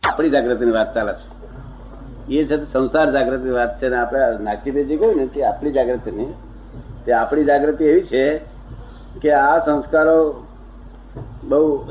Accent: native